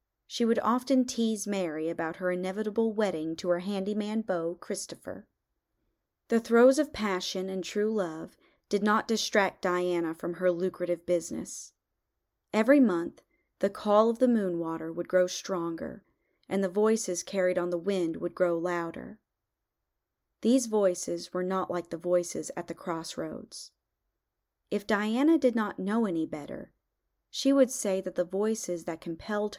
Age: 40-59